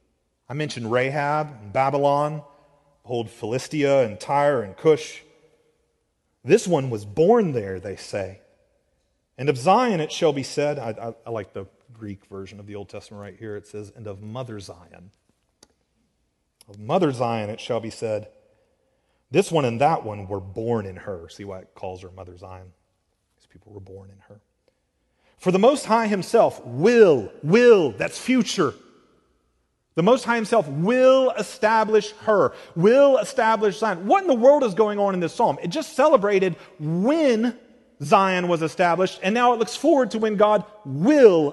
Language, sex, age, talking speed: English, male, 40-59, 170 wpm